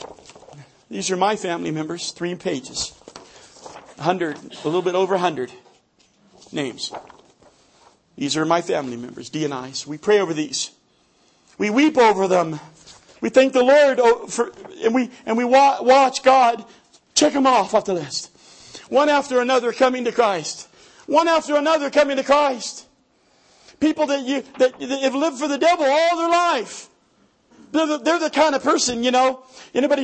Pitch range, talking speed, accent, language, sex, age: 195-295 Hz, 170 wpm, American, English, male, 50-69